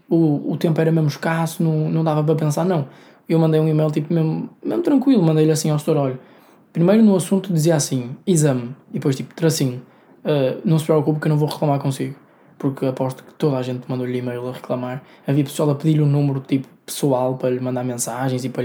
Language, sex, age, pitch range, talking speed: Portuguese, male, 20-39, 140-170 Hz, 220 wpm